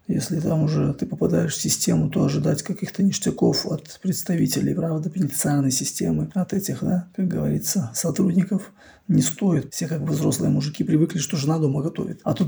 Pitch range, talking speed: 155-190 Hz, 175 wpm